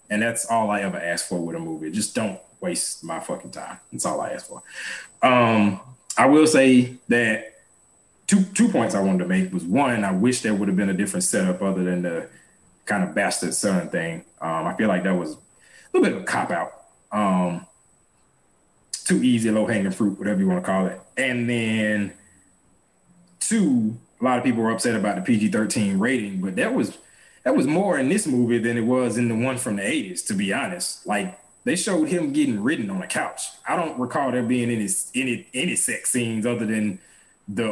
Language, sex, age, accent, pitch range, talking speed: English, male, 20-39, American, 105-145 Hz, 210 wpm